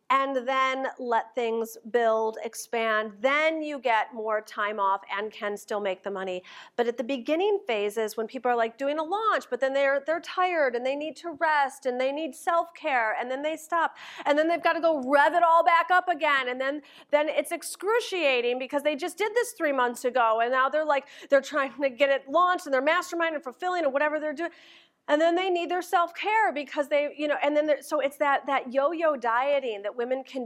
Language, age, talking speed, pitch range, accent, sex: English, 40-59, 225 wpm, 240-325 Hz, American, female